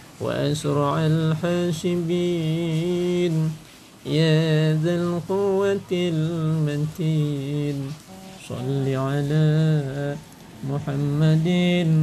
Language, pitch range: Indonesian, 145-180 Hz